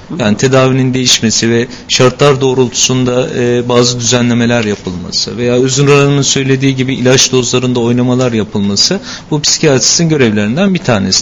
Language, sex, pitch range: Turkish, male, 120-150 Hz